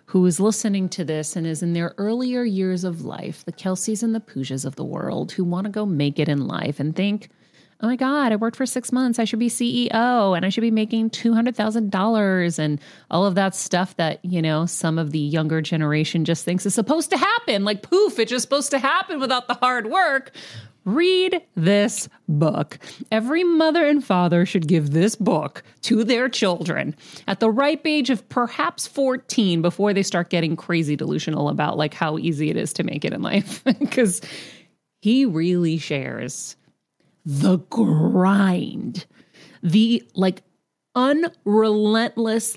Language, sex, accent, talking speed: English, female, American, 180 wpm